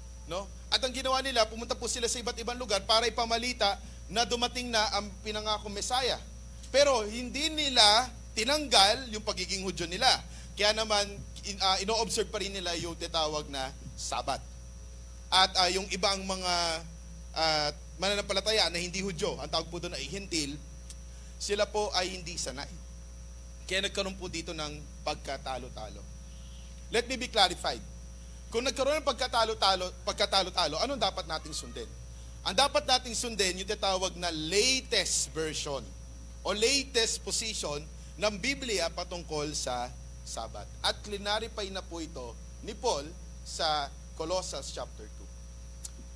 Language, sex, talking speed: Filipino, male, 140 wpm